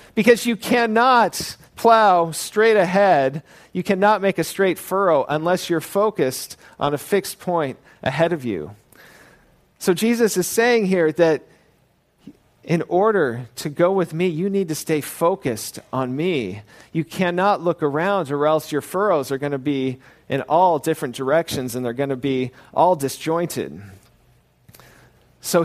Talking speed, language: 150 wpm, English